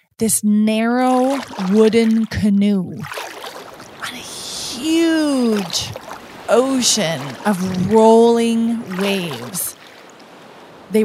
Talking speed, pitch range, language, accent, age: 65 wpm, 200-235 Hz, English, American, 30-49